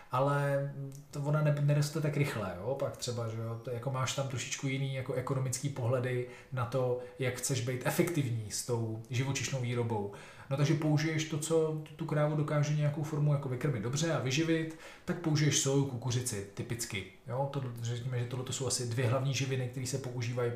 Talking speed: 180 wpm